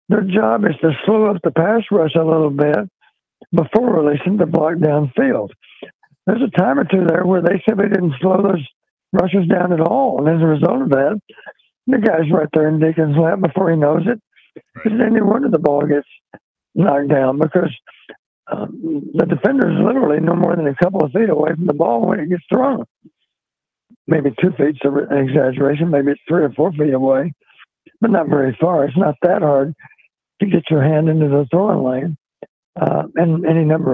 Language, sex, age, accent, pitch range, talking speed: English, male, 60-79, American, 145-185 Hz, 200 wpm